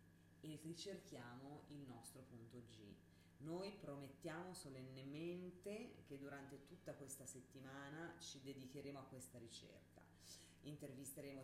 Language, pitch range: Italian, 125-155 Hz